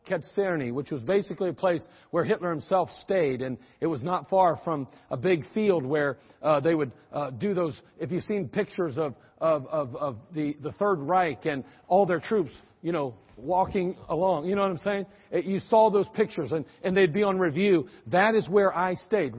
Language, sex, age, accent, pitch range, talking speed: English, male, 50-69, American, 160-205 Hz, 205 wpm